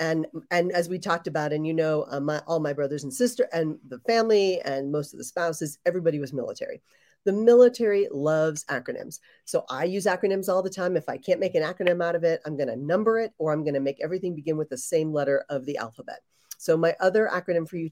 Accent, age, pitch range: American, 40-59, 155-205 Hz